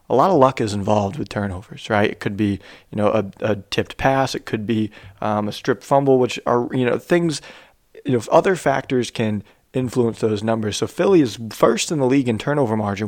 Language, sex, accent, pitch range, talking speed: English, male, American, 110-130 Hz, 225 wpm